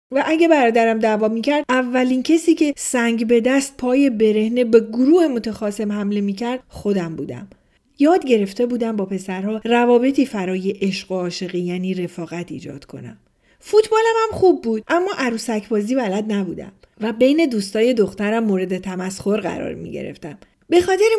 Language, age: Persian, 40-59